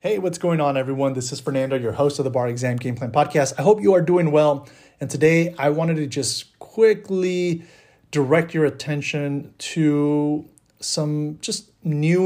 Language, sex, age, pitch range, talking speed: English, male, 30-49, 130-155 Hz, 180 wpm